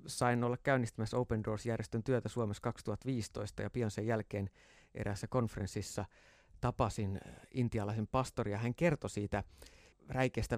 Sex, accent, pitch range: male, native, 105-130 Hz